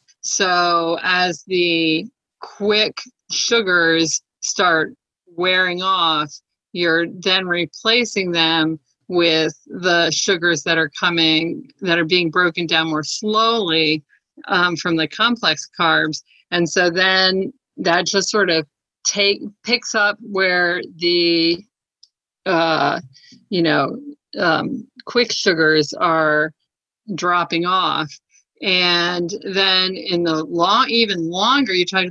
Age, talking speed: 50-69, 110 wpm